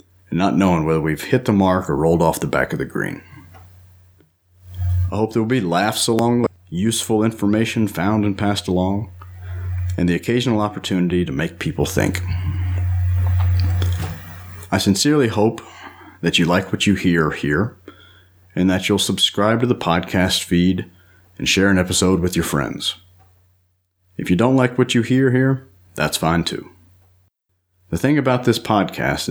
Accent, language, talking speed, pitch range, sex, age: American, English, 160 wpm, 90-110 Hz, male, 40-59